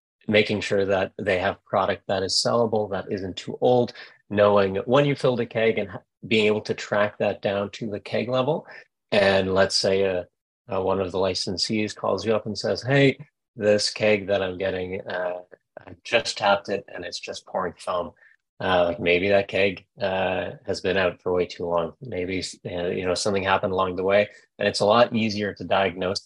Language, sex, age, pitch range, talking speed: English, male, 30-49, 95-120 Hz, 205 wpm